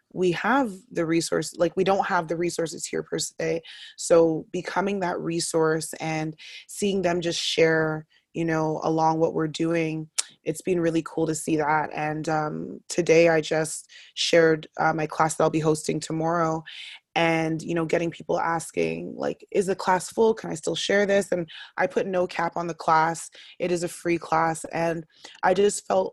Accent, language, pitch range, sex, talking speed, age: American, English, 160-175 Hz, female, 190 wpm, 20-39